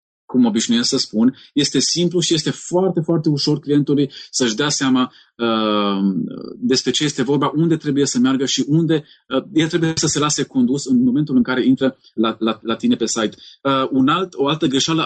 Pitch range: 125-160 Hz